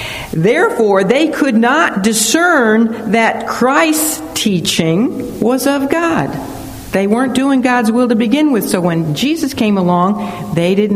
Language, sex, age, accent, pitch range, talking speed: English, female, 60-79, American, 175-245 Hz, 140 wpm